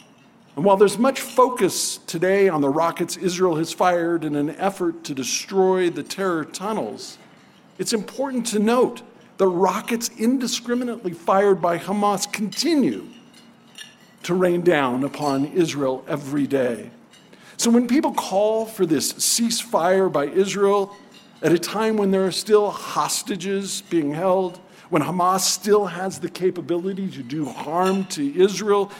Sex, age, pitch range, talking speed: male, 50-69, 175-230 Hz, 140 wpm